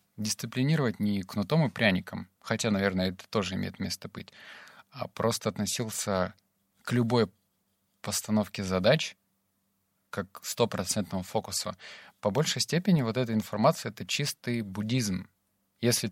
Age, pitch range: 30-49, 100-120 Hz